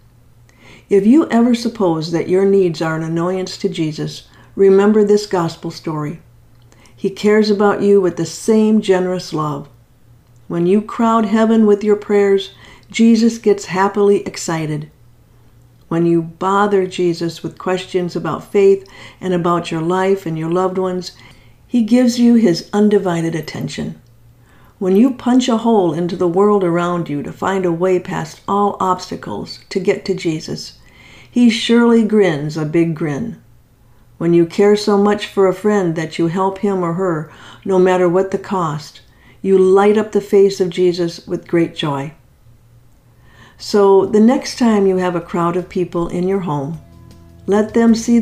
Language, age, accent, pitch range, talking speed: English, 50-69, American, 150-200 Hz, 160 wpm